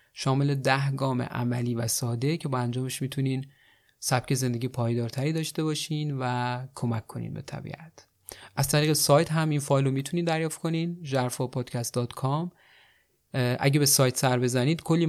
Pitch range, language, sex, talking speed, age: 120-145 Hz, Persian, male, 140 wpm, 30-49